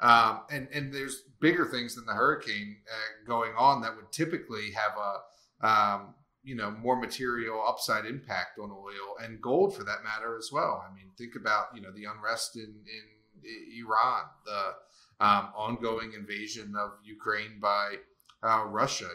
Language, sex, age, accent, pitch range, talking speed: English, male, 30-49, American, 105-125 Hz, 165 wpm